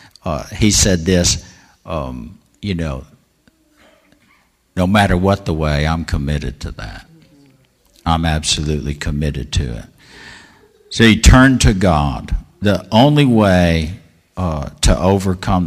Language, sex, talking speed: English, male, 125 wpm